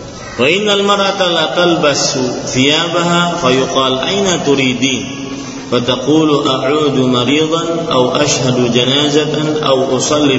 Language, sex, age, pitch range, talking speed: Malay, male, 30-49, 135-165 Hz, 90 wpm